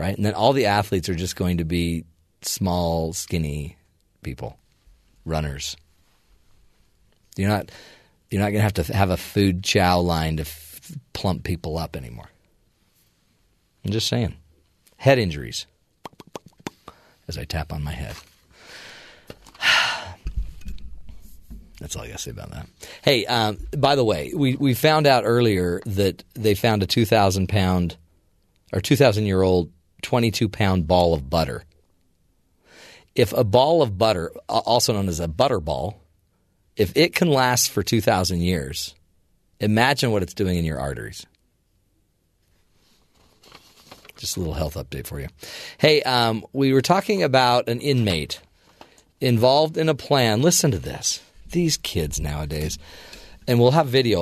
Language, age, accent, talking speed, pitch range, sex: English, 40-59, American, 150 wpm, 85-115 Hz, male